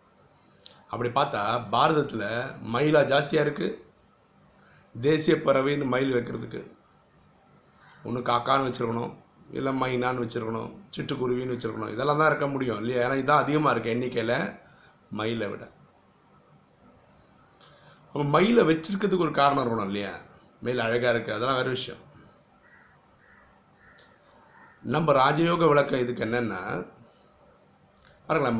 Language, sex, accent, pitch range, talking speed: Tamil, male, native, 120-140 Hz, 95 wpm